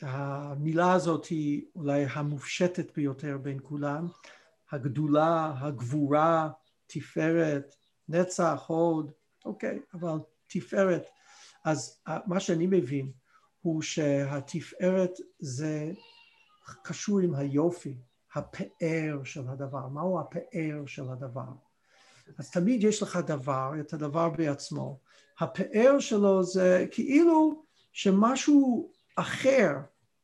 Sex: male